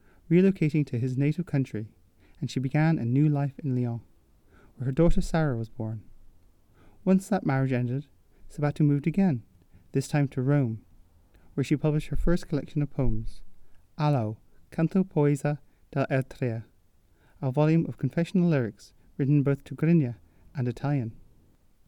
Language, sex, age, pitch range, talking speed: English, male, 30-49, 115-160 Hz, 145 wpm